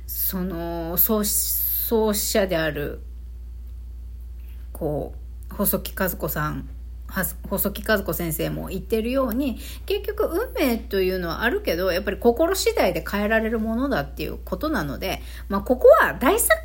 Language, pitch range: Japanese, 170-275 Hz